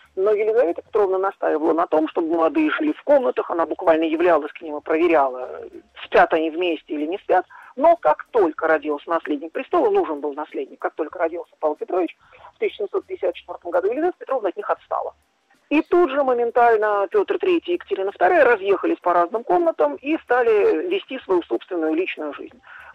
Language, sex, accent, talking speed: Russian, male, native, 175 wpm